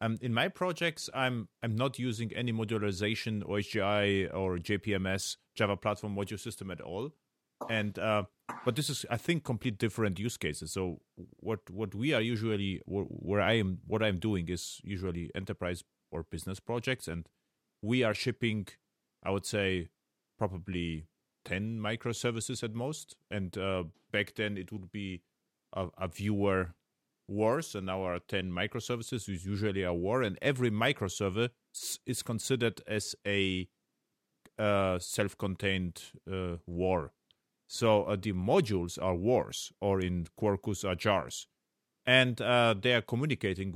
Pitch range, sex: 95-115 Hz, male